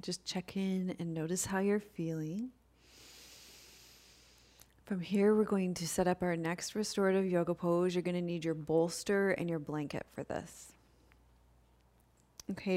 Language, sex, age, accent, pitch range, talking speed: English, female, 30-49, American, 170-195 Hz, 145 wpm